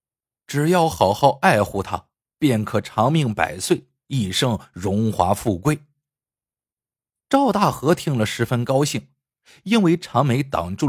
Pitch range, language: 105-150 Hz, Chinese